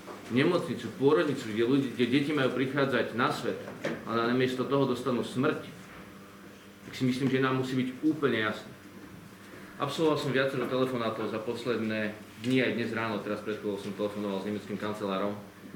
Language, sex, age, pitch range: Slovak, male, 40-59, 100-130 Hz